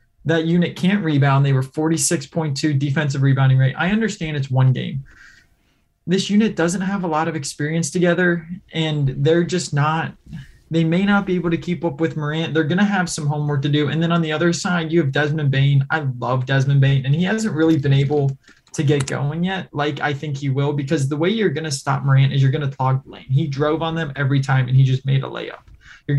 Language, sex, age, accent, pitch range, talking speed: English, male, 20-39, American, 135-165 Hz, 235 wpm